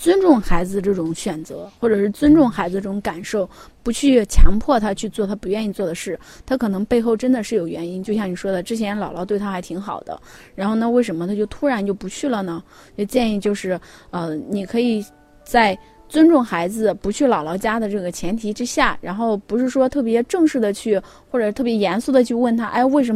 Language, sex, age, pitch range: Chinese, female, 20-39, 185-235 Hz